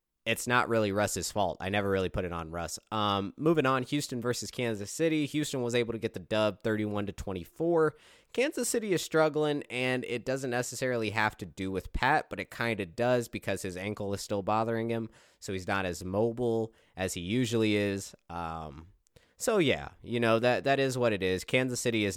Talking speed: 205 wpm